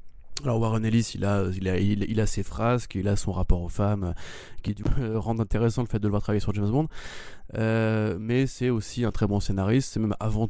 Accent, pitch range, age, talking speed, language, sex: French, 100-115 Hz, 20-39, 235 wpm, French, male